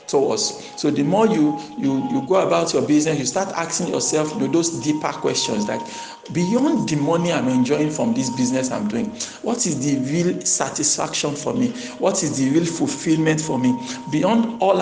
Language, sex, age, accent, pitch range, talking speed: English, male, 50-69, Nigerian, 145-190 Hz, 190 wpm